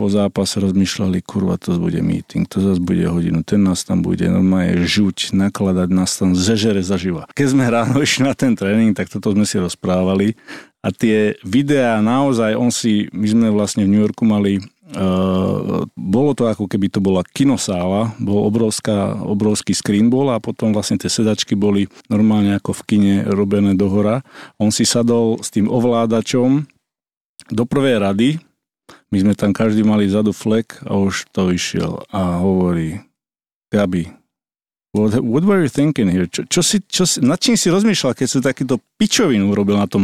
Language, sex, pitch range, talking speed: Slovak, male, 100-125 Hz, 170 wpm